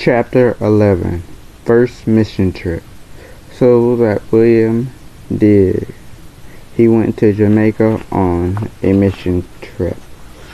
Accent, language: American, English